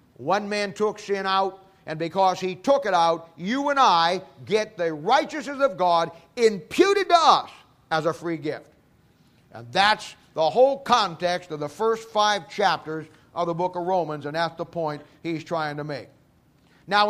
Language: English